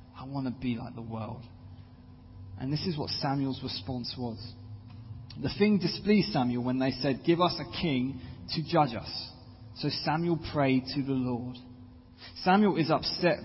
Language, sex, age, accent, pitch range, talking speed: English, male, 20-39, British, 120-160 Hz, 165 wpm